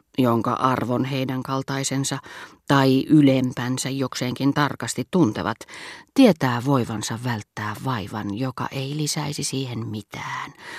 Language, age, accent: Finnish, 40-59, native